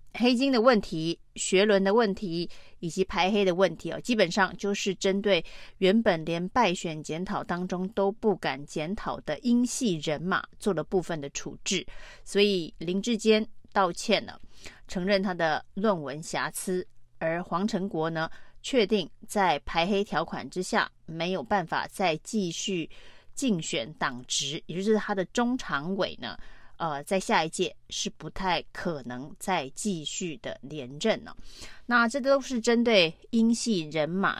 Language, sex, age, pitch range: Chinese, female, 30-49, 165-210 Hz